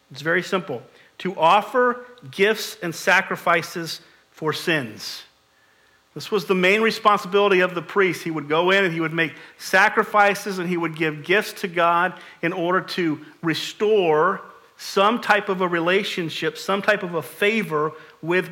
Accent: American